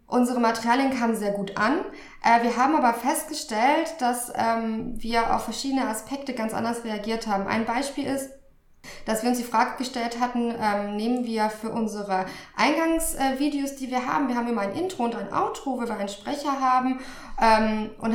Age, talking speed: 20-39, 170 wpm